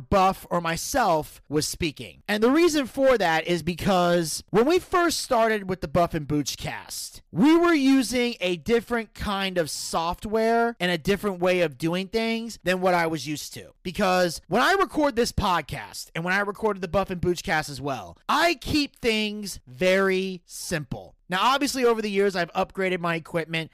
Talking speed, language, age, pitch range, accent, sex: 185 wpm, English, 30-49, 170-220 Hz, American, male